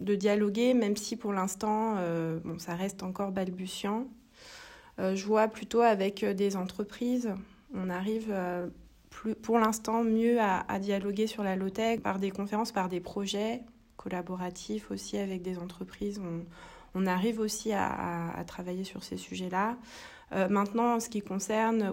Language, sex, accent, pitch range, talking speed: French, female, French, 190-225 Hz, 165 wpm